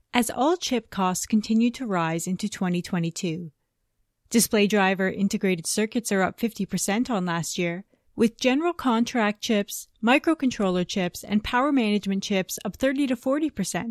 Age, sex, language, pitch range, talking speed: 30-49, female, English, 185-245 Hz, 135 wpm